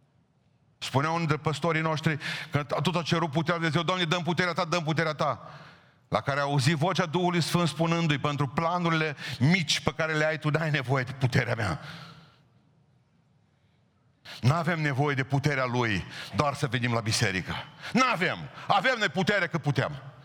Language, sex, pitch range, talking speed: Romanian, male, 125-160 Hz, 170 wpm